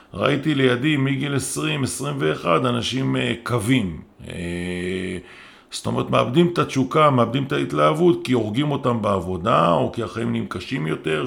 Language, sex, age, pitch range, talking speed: Hebrew, male, 50-69, 95-130 Hz, 145 wpm